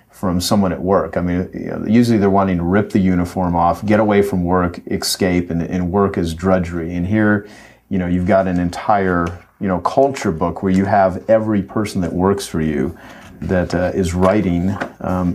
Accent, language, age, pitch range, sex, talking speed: American, English, 40-59, 90-105 Hz, male, 195 wpm